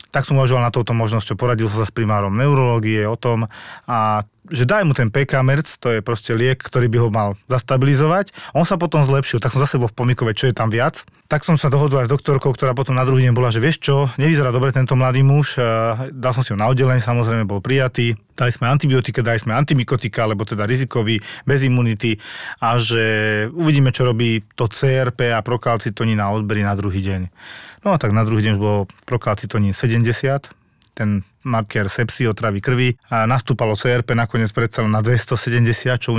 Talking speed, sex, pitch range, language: 200 wpm, male, 110-130 Hz, Slovak